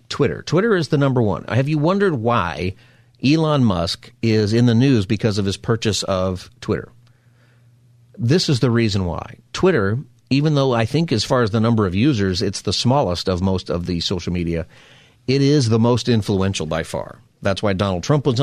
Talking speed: 195 wpm